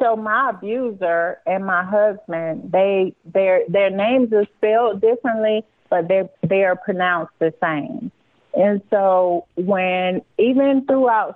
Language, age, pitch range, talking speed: English, 30-49, 170-205 Hz, 130 wpm